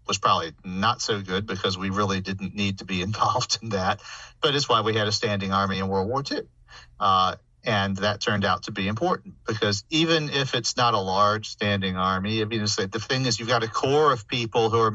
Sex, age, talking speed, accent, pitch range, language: male, 40-59, 230 wpm, American, 95-115 Hz, English